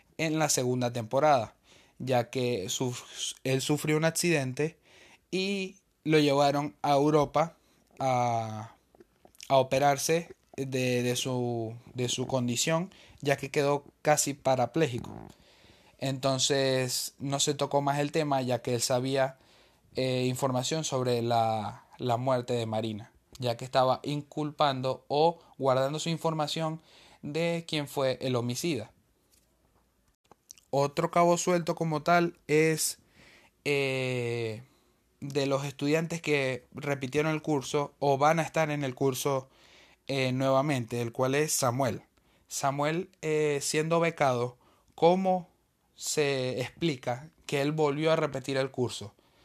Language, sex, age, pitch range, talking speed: Spanish, male, 20-39, 125-150 Hz, 120 wpm